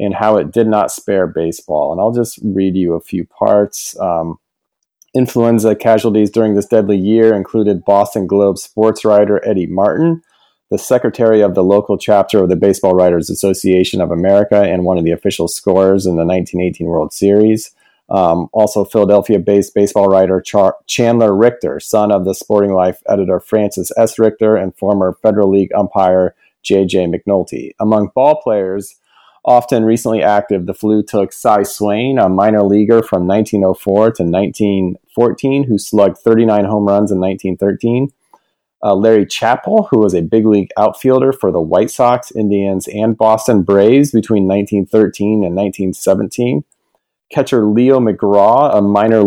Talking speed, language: 155 wpm, English